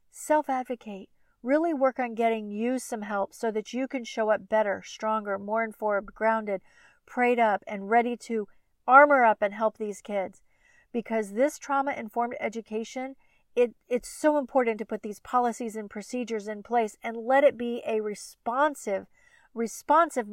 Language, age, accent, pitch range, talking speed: English, 40-59, American, 220-265 Hz, 155 wpm